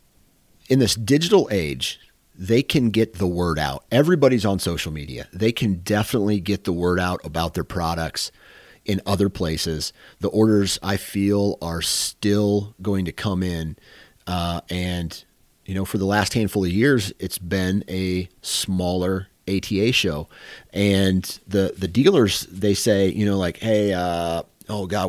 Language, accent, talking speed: English, American, 160 wpm